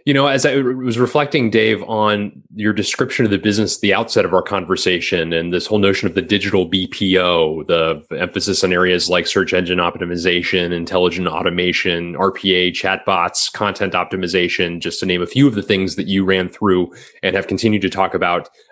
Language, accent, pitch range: English, American, 95-115 Hz